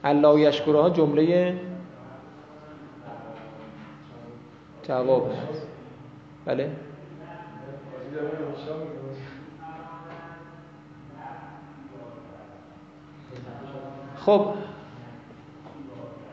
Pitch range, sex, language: 135-170 Hz, male, Persian